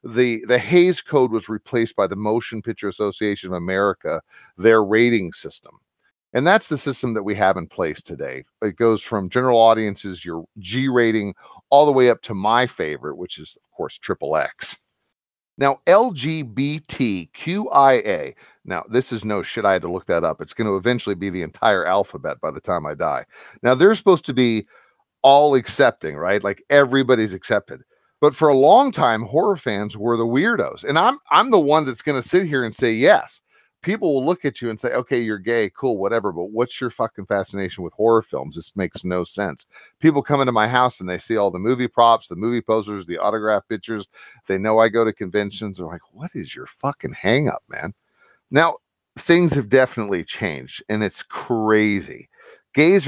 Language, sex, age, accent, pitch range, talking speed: English, male, 40-59, American, 105-130 Hz, 195 wpm